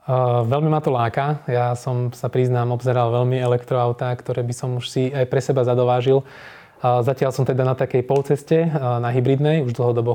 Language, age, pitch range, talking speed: Slovak, 20-39, 115-125 Hz, 195 wpm